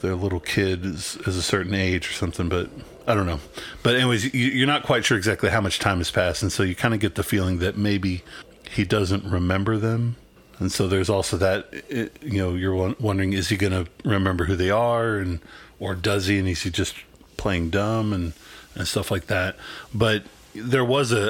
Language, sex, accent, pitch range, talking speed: English, male, American, 95-110 Hz, 220 wpm